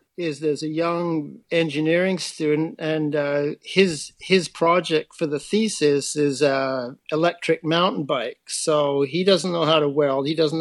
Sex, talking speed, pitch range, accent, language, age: male, 160 wpm, 145-170 Hz, American, English, 60-79